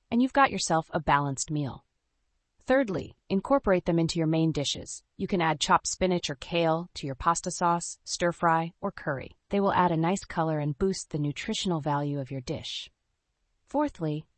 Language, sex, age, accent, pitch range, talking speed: English, female, 30-49, American, 145-200 Hz, 180 wpm